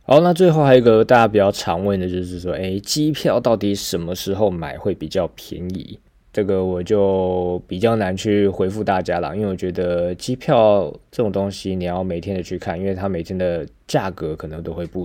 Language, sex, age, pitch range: Chinese, male, 20-39, 90-100 Hz